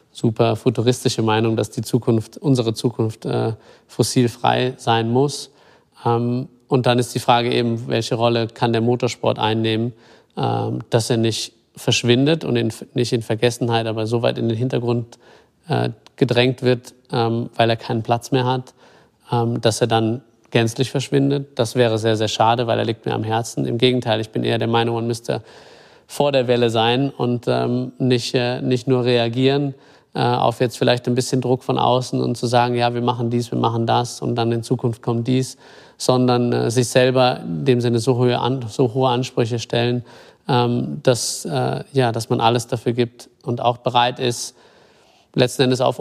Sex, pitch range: male, 115-130 Hz